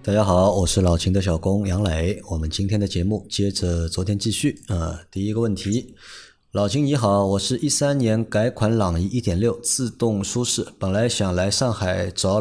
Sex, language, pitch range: male, Chinese, 95-120 Hz